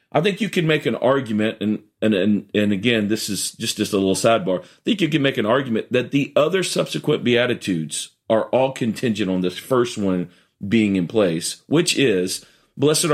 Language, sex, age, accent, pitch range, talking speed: English, male, 40-59, American, 105-145 Hz, 200 wpm